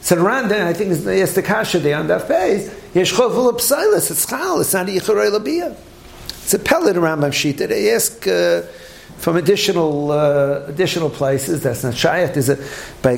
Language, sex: English, male